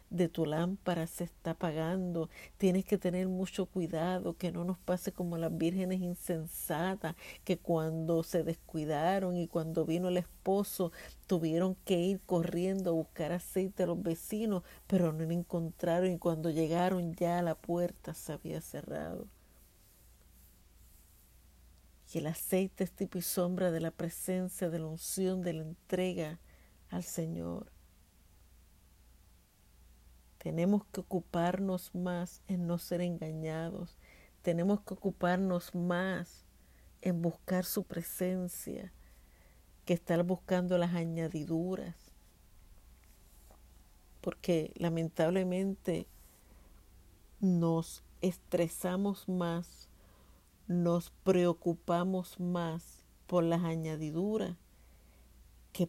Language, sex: Spanish, female